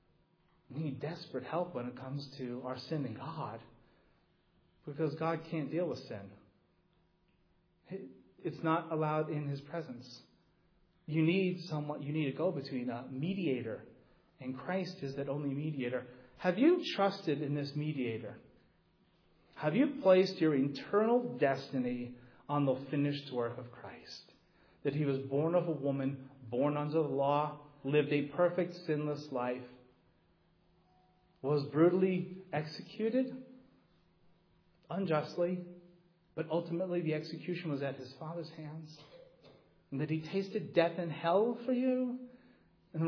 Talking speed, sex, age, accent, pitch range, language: 130 wpm, male, 40-59, American, 135-175 Hz, English